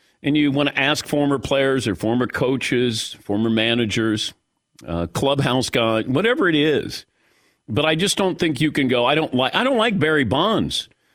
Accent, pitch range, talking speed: American, 120-180 Hz, 185 wpm